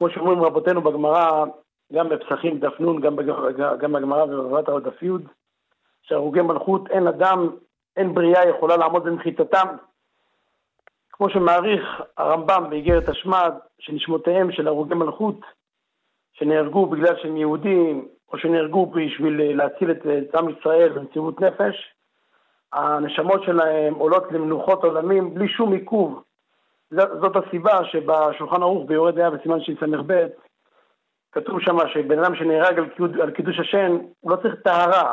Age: 50-69